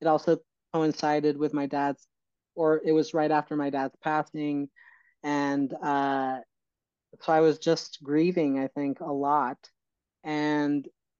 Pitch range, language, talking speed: 140-160 Hz, English, 140 wpm